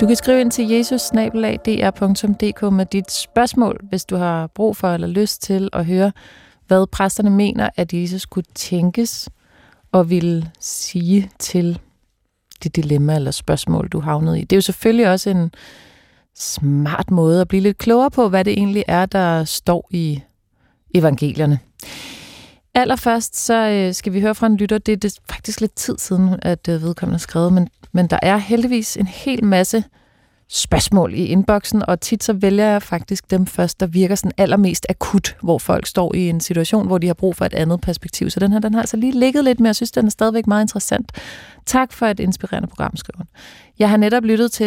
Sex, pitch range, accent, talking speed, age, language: female, 175-215 Hz, native, 190 wpm, 30-49, Danish